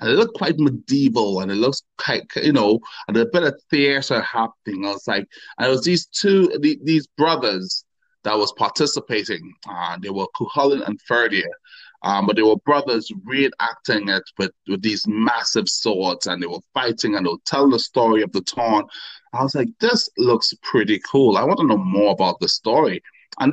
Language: English